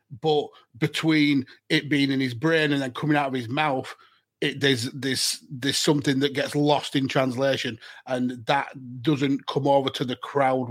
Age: 30-49